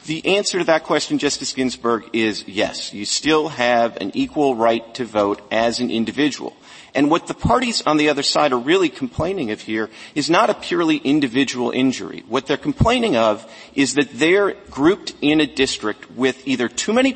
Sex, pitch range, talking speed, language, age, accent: male, 115-155 Hz, 190 wpm, English, 40-59, American